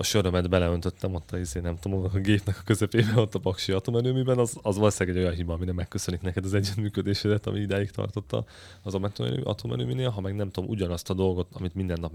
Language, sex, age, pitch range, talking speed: Hungarian, male, 30-49, 90-105 Hz, 210 wpm